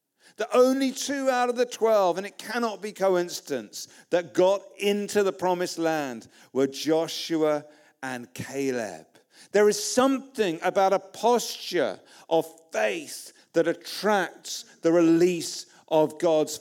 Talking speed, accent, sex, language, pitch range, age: 130 wpm, British, male, English, 150-205 Hz, 50-69